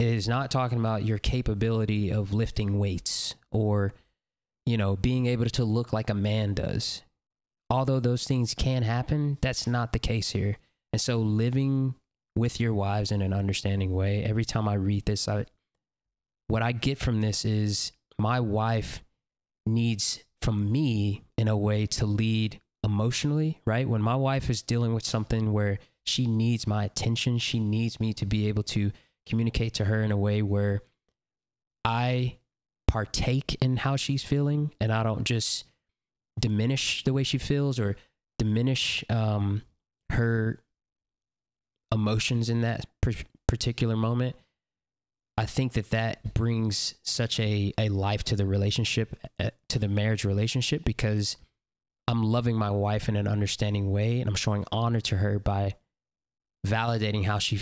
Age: 20-39